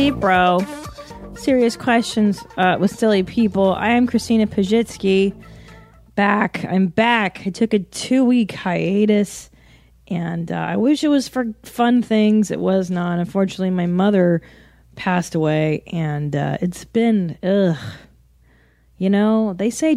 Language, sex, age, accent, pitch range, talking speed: English, female, 20-39, American, 165-215 Hz, 135 wpm